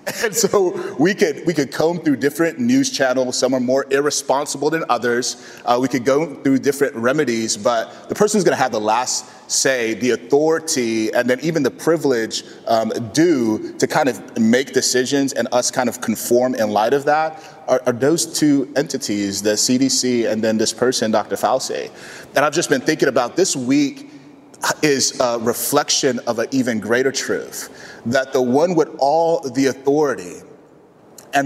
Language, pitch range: English, 125-180 Hz